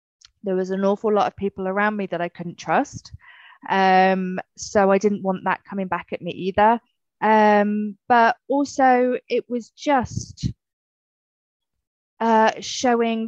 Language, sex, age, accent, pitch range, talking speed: English, female, 20-39, British, 180-220 Hz, 145 wpm